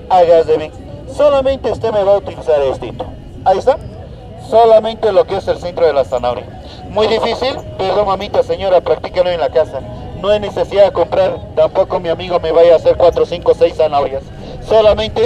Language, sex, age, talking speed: Spanish, male, 40-59, 185 wpm